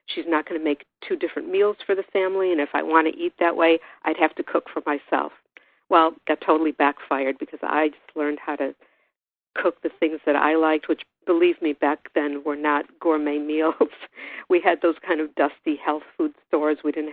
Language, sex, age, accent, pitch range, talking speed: English, female, 50-69, American, 150-190 Hz, 215 wpm